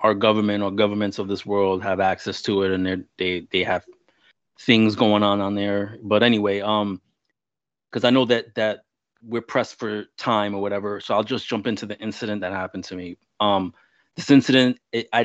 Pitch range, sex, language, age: 100-115 Hz, male, English, 30-49